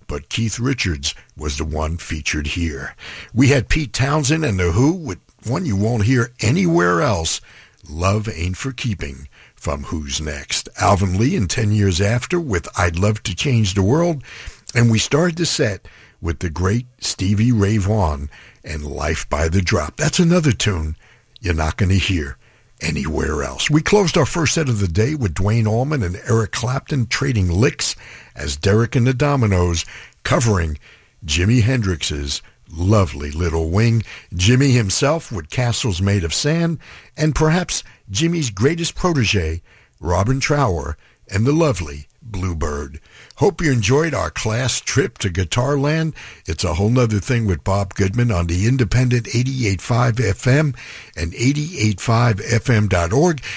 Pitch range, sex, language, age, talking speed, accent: 85-125 Hz, male, English, 60-79, 150 wpm, American